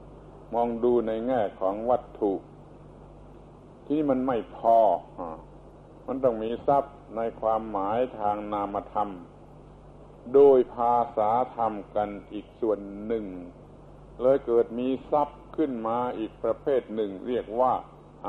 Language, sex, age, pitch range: Thai, male, 60-79, 105-130 Hz